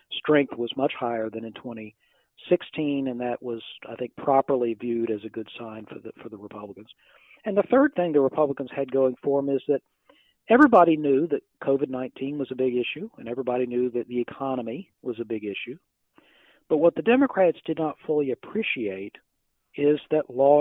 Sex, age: male, 40-59